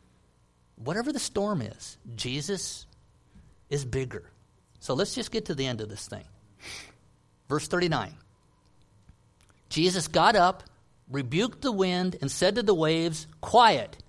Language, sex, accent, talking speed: English, male, American, 130 wpm